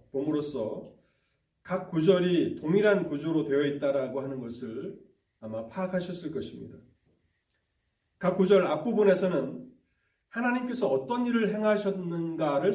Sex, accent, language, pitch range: male, native, Korean, 130-190 Hz